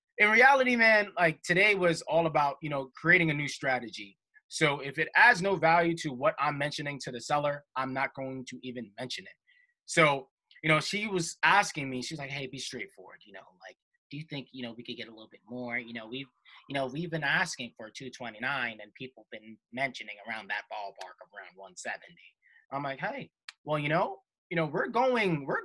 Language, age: English, 20-39